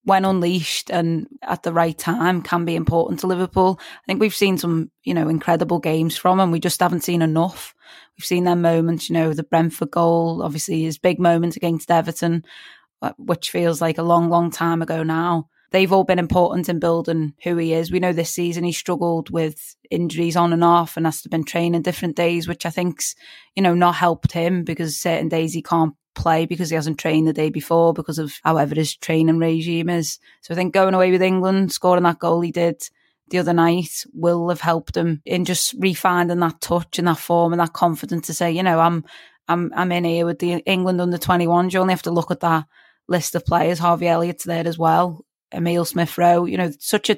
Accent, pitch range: British, 165-180 Hz